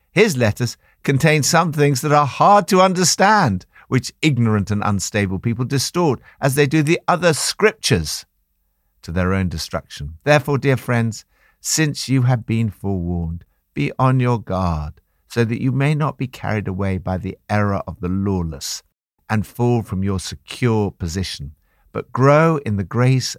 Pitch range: 85-135 Hz